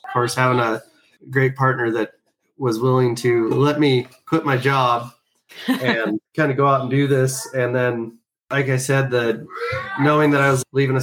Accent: American